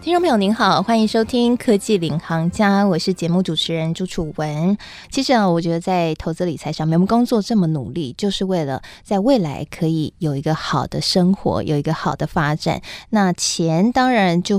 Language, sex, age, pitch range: Chinese, female, 20-39, 160-215 Hz